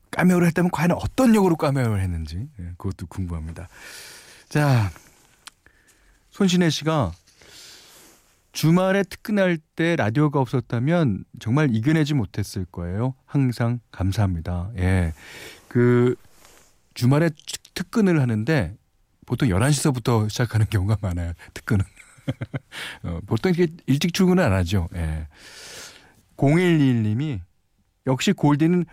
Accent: native